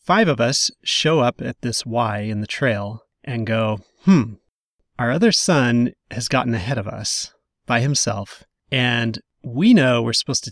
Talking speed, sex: 170 wpm, male